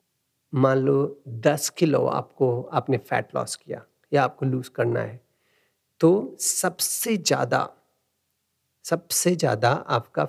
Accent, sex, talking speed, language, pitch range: native, male, 115 wpm, Hindi, 125-165 Hz